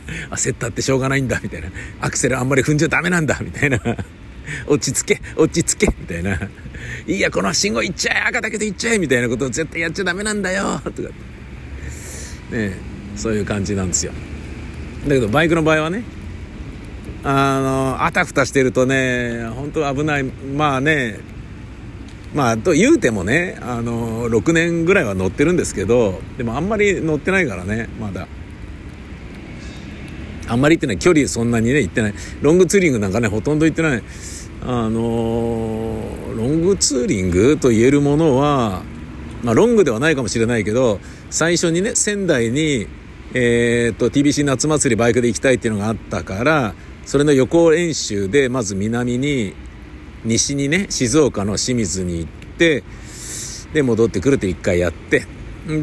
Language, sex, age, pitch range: Japanese, male, 50-69, 105-145 Hz